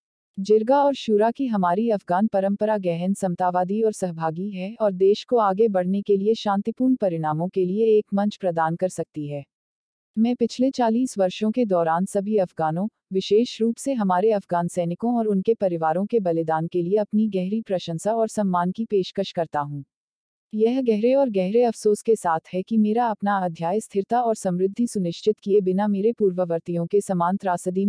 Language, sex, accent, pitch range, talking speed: Hindi, female, native, 180-220 Hz, 175 wpm